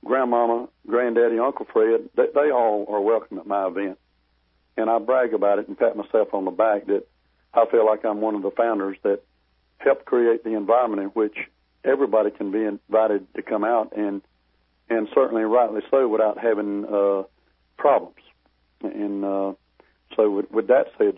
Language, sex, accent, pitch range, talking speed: English, male, American, 100-120 Hz, 175 wpm